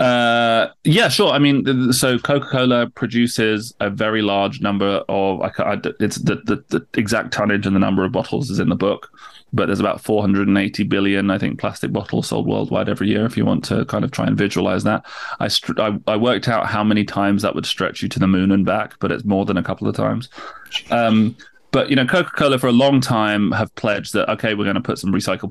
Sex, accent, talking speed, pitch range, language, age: male, British, 235 wpm, 95-120 Hz, English, 20-39